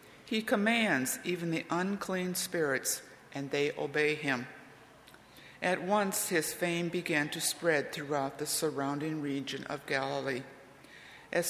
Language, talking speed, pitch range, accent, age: English, 125 wpm, 145-175 Hz, American, 60-79